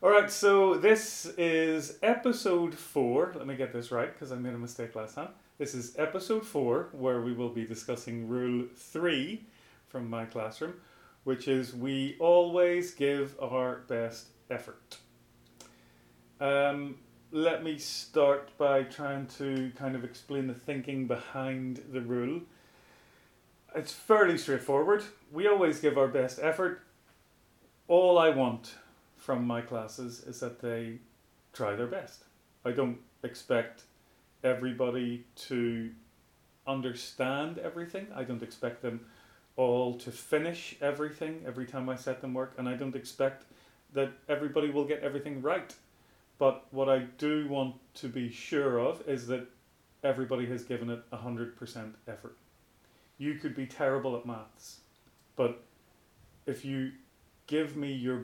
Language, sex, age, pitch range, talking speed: English, male, 30-49, 120-150 Hz, 140 wpm